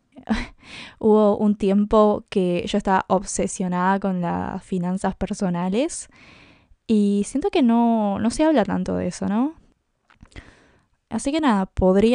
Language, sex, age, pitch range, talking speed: English, female, 10-29, 190-215 Hz, 130 wpm